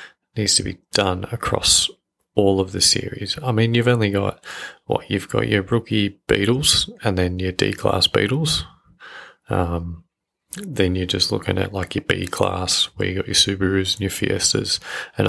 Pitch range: 95-110 Hz